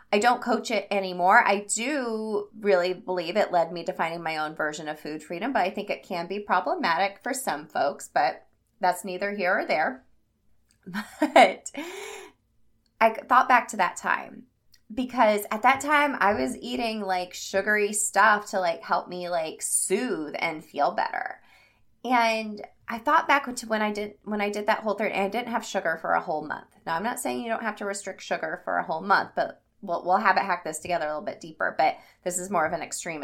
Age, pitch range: 20-39, 180-235 Hz